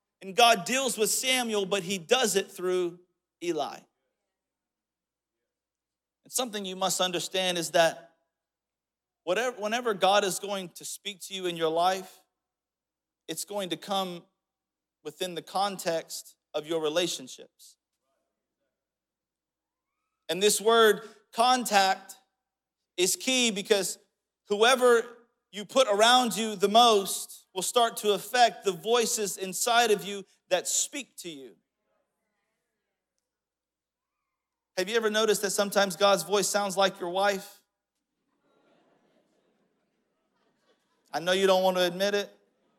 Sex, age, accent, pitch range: male, 40-59, American, 180-215 Hz